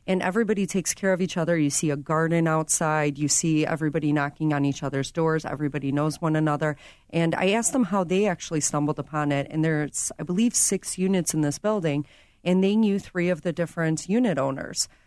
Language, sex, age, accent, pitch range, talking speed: English, female, 40-59, American, 155-190 Hz, 205 wpm